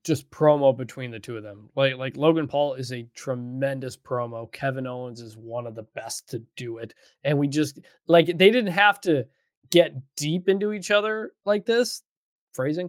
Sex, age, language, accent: male, 20-39, English, American